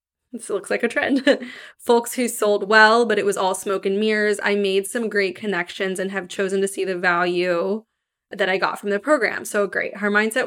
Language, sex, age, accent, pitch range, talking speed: English, female, 20-39, American, 190-225 Hz, 225 wpm